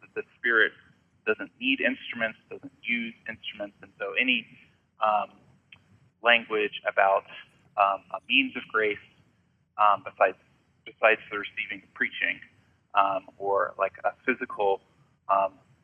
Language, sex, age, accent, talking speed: English, male, 30-49, American, 120 wpm